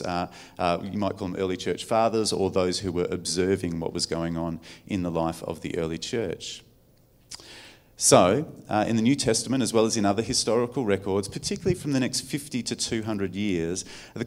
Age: 40-59